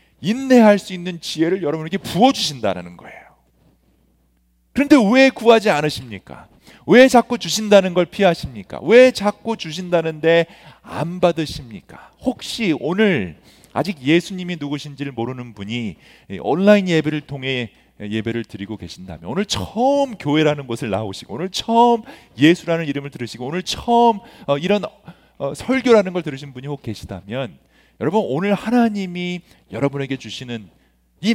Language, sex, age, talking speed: English, male, 40-59, 115 wpm